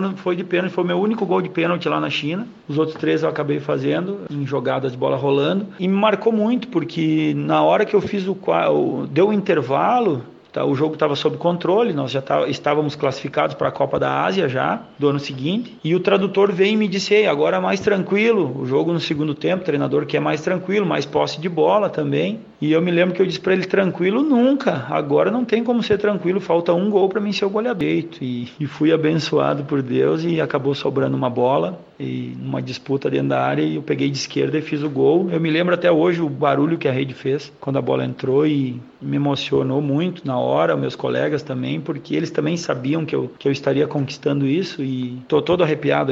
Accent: Brazilian